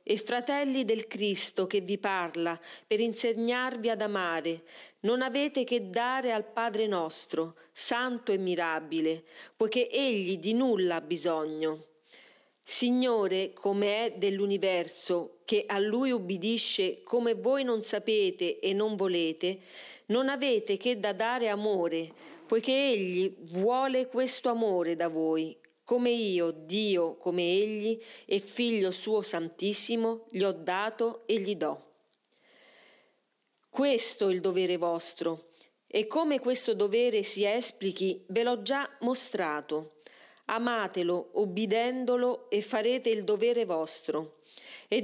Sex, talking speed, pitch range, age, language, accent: female, 125 wpm, 180-240 Hz, 40-59, Italian, native